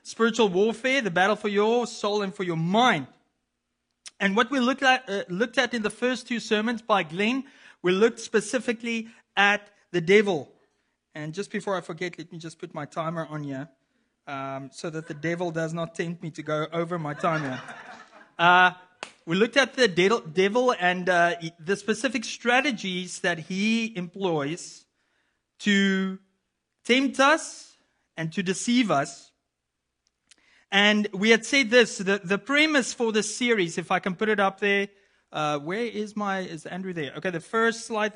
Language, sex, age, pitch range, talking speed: English, male, 30-49, 170-230 Hz, 170 wpm